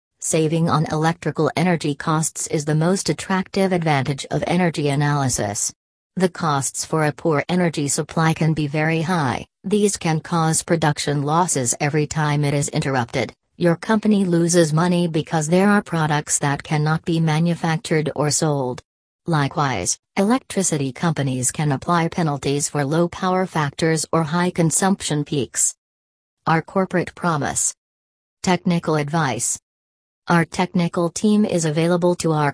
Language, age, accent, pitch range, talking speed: English, 40-59, American, 145-170 Hz, 135 wpm